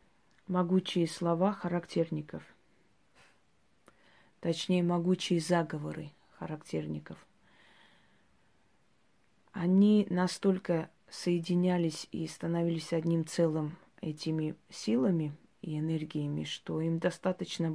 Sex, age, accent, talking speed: female, 30-49, native, 70 wpm